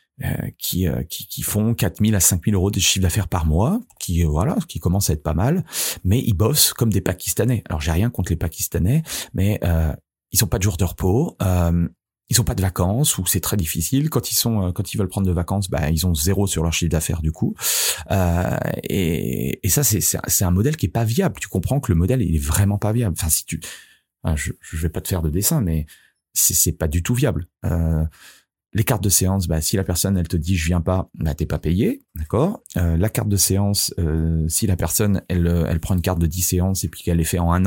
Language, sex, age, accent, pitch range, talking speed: French, male, 40-59, French, 85-105 Hz, 260 wpm